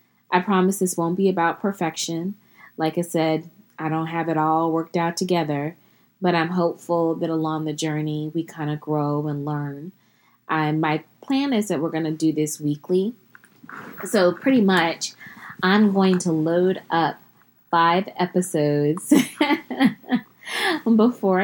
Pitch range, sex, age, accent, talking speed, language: 155-180 Hz, female, 20-39, American, 145 wpm, English